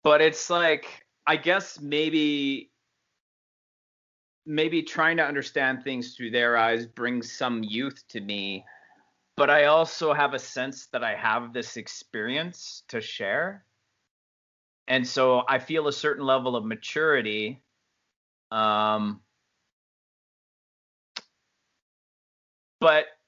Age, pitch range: 30-49, 105-145 Hz